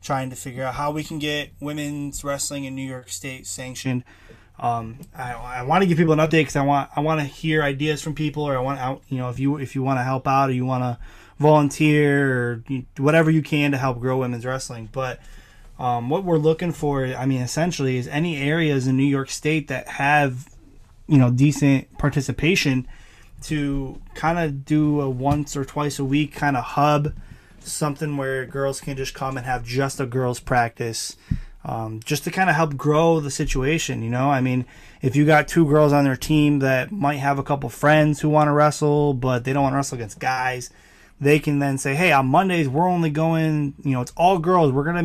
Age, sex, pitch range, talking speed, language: 20-39, male, 125-150 Hz, 220 wpm, English